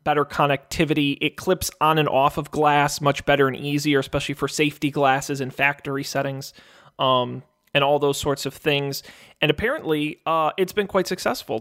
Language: English